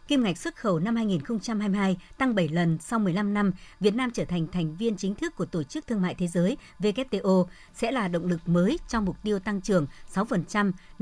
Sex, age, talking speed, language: male, 60-79, 215 wpm, Vietnamese